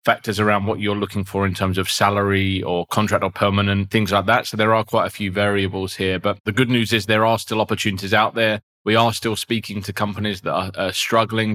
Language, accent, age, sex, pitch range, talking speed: English, British, 20-39, male, 95-110 Hz, 235 wpm